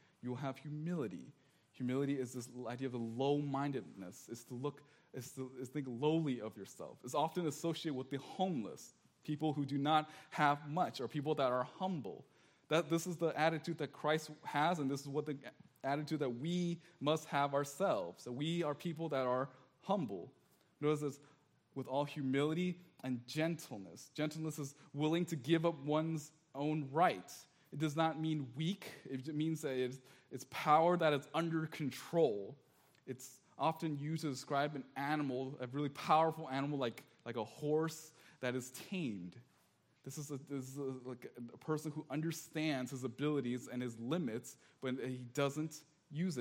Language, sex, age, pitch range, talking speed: English, male, 20-39, 130-160 Hz, 170 wpm